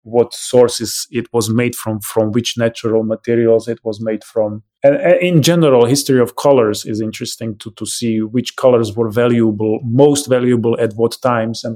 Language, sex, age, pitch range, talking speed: English, male, 20-39, 110-125 Hz, 180 wpm